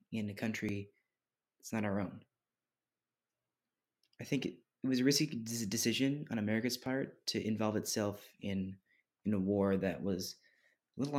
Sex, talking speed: male, 150 wpm